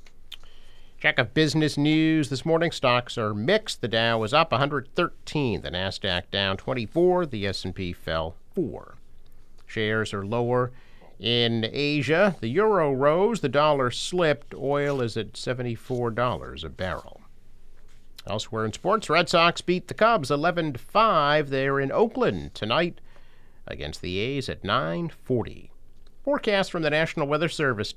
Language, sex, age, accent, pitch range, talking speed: English, male, 50-69, American, 110-145 Hz, 140 wpm